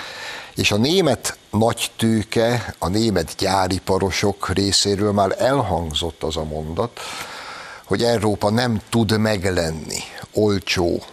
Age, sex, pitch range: 60-79, male, 85-115 Hz